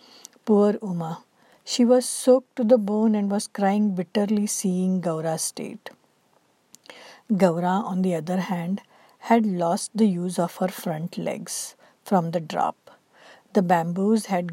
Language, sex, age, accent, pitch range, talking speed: English, female, 60-79, Indian, 180-230 Hz, 140 wpm